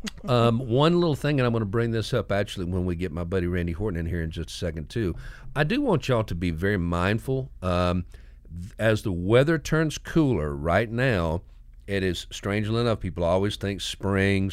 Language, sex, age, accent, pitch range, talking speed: English, male, 50-69, American, 85-120 Hz, 205 wpm